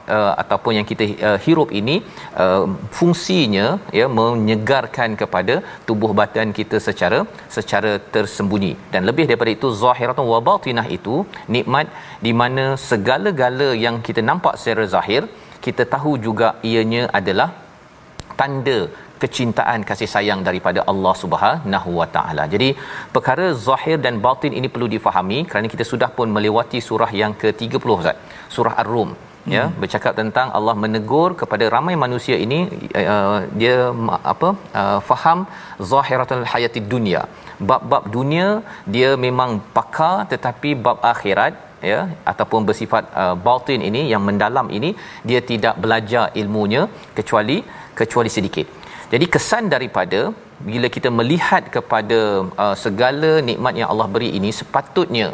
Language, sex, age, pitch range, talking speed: Malayalam, male, 40-59, 110-130 Hz, 130 wpm